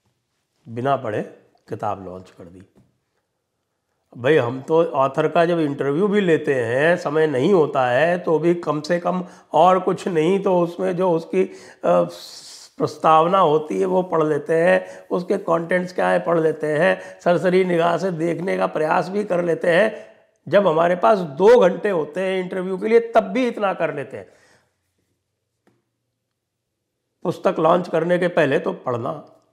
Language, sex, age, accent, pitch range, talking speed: English, male, 60-79, Indian, 135-180 Hz, 125 wpm